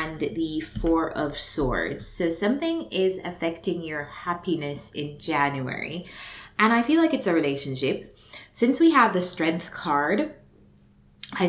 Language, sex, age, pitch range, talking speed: English, female, 20-39, 155-200 Hz, 135 wpm